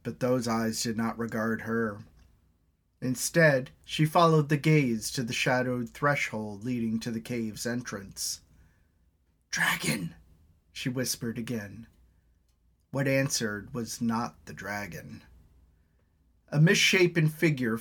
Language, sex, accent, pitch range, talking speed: English, male, American, 95-150 Hz, 115 wpm